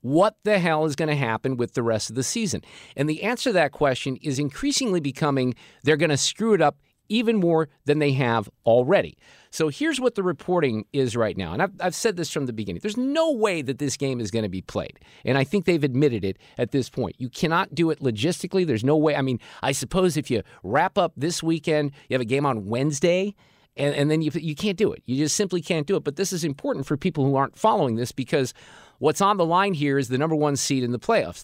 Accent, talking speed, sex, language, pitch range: American, 250 wpm, male, English, 130-175 Hz